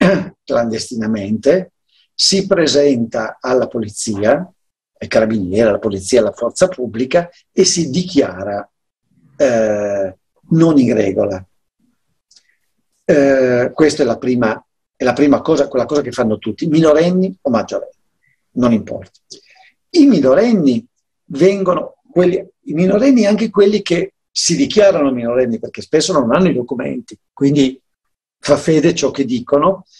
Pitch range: 125-185 Hz